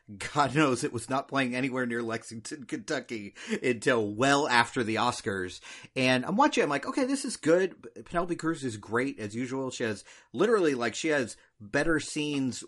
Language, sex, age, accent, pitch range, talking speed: English, male, 40-59, American, 115-160 Hz, 180 wpm